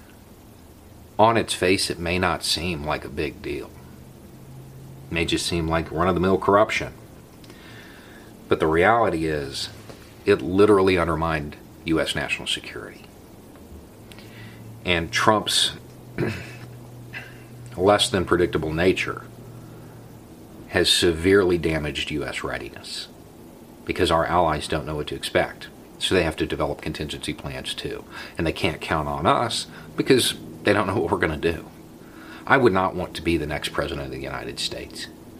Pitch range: 75-105 Hz